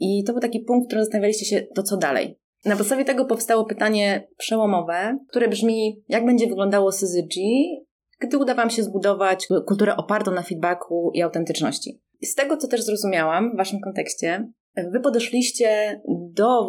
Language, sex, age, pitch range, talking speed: Polish, female, 30-49, 185-235 Hz, 175 wpm